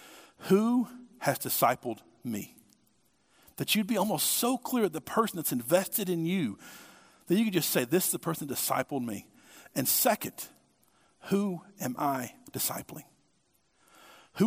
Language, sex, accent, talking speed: English, male, American, 150 wpm